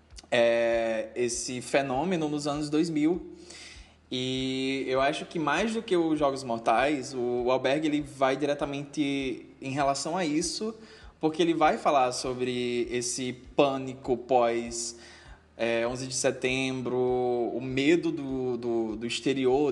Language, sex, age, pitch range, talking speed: Portuguese, male, 20-39, 120-145 Hz, 130 wpm